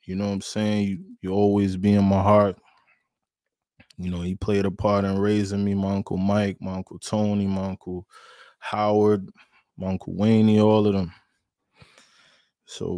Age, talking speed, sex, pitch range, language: 20-39, 170 wpm, male, 95-100 Hz, English